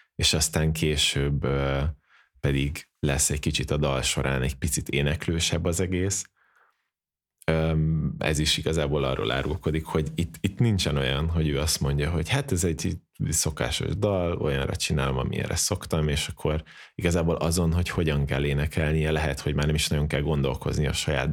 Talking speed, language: 160 wpm, Hungarian